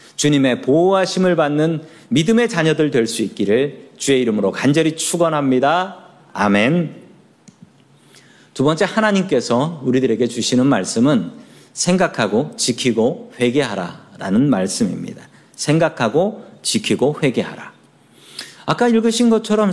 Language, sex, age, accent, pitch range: Korean, male, 40-59, native, 150-225 Hz